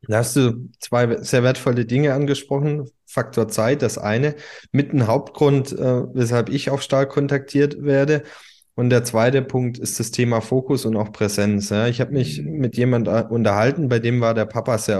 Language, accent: English, German